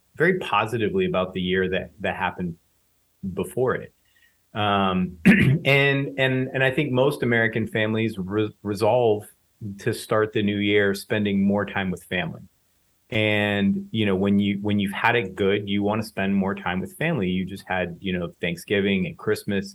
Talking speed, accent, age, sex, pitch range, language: 175 wpm, American, 30-49, male, 95-115 Hz, English